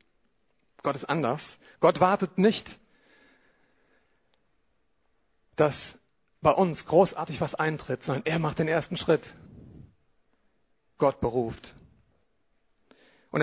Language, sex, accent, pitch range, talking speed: German, male, German, 155-210 Hz, 95 wpm